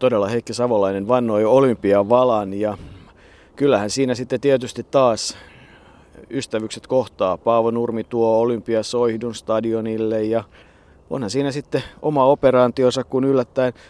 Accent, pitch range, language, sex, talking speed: native, 105-130 Hz, Finnish, male, 110 wpm